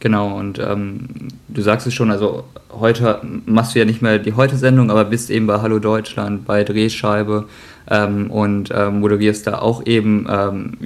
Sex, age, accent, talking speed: male, 20-39, German, 175 wpm